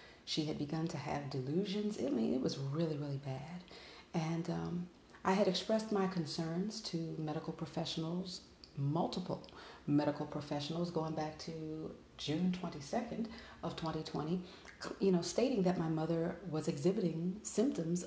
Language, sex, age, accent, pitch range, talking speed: English, female, 40-59, American, 165-210 Hz, 140 wpm